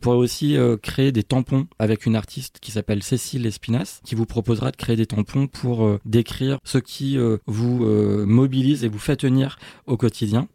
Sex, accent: male, French